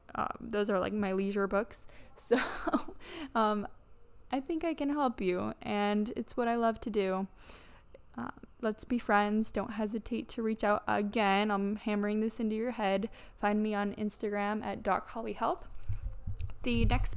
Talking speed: 170 wpm